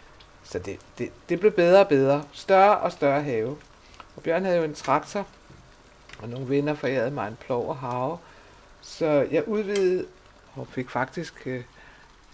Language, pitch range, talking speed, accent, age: Danish, 125-165 Hz, 165 wpm, native, 60-79